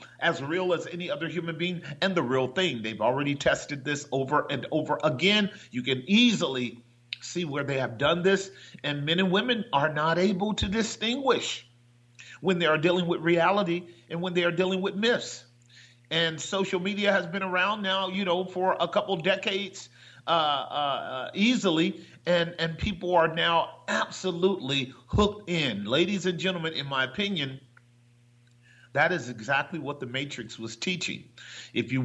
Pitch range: 135-185 Hz